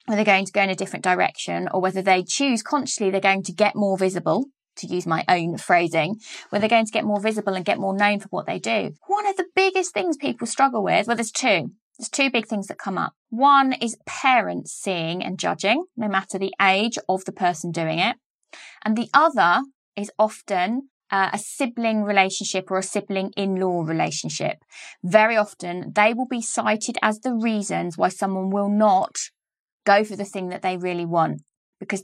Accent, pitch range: British, 190-245 Hz